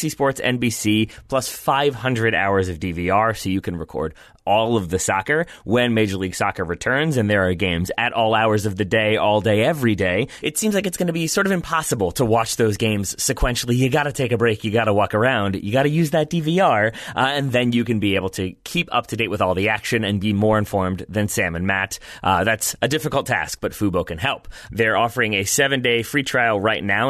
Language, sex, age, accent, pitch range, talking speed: English, male, 30-49, American, 95-125 Hz, 235 wpm